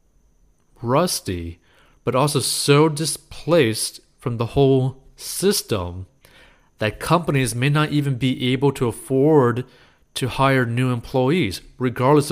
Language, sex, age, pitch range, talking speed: English, male, 30-49, 115-150 Hz, 110 wpm